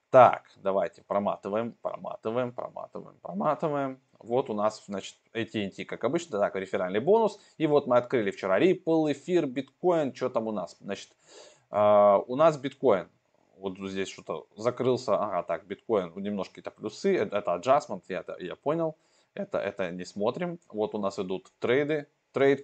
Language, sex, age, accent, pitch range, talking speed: Russian, male, 20-39, native, 100-140 Hz, 160 wpm